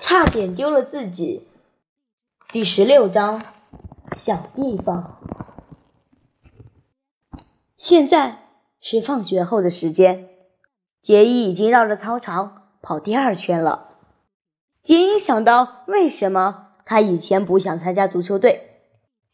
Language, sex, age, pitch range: Chinese, female, 20-39, 190-255 Hz